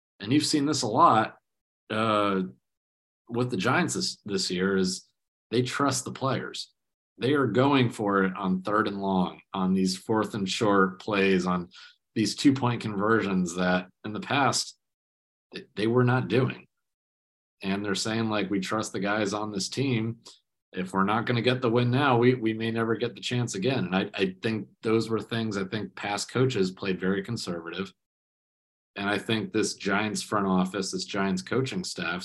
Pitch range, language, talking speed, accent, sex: 95-120 Hz, English, 180 wpm, American, male